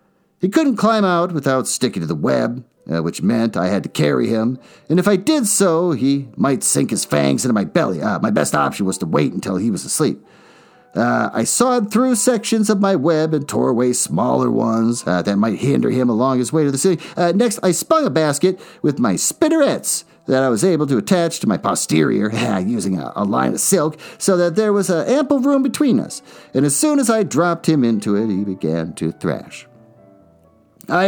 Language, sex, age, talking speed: English, male, 50-69, 215 wpm